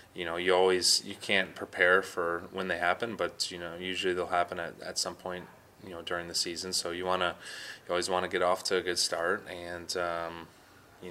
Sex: male